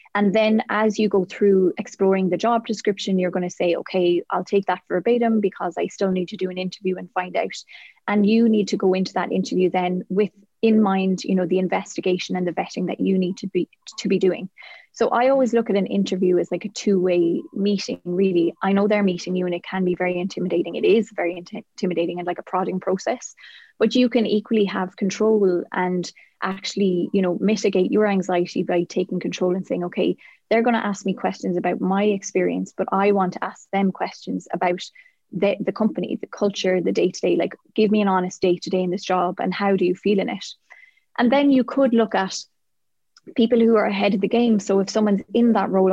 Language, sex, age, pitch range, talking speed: English, female, 20-39, 185-210 Hz, 220 wpm